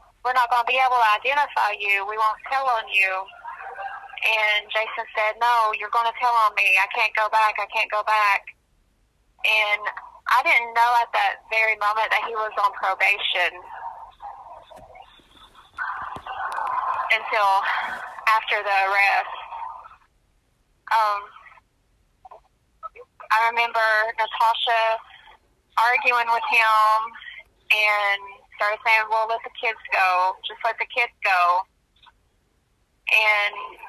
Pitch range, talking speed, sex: 215-255 Hz, 120 wpm, female